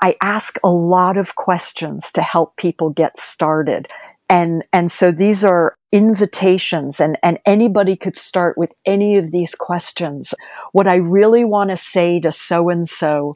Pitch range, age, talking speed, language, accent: 165-190 Hz, 50-69, 155 wpm, English, American